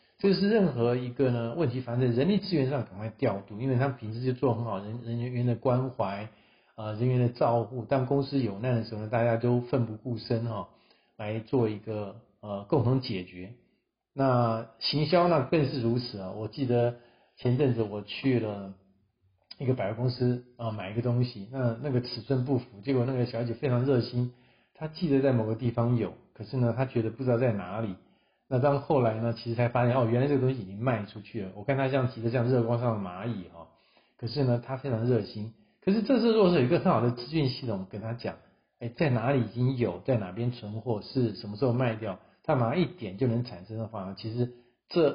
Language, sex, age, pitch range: Chinese, male, 50-69, 110-130 Hz